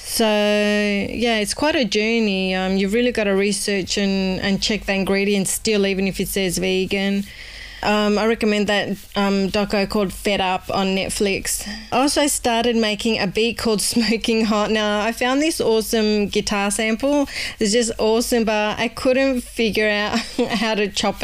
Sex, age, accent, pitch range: female, 20-39, Australian, 195-230 Hz